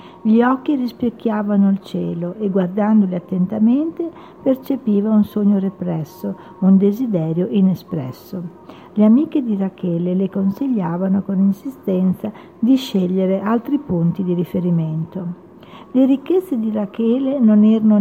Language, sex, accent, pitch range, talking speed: Italian, female, native, 185-230 Hz, 115 wpm